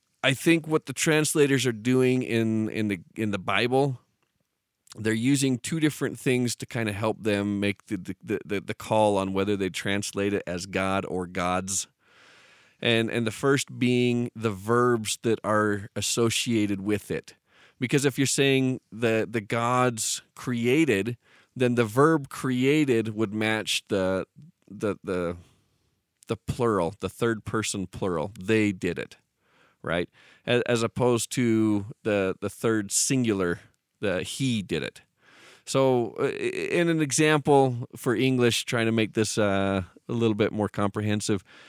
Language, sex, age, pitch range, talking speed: English, male, 40-59, 105-130 Hz, 150 wpm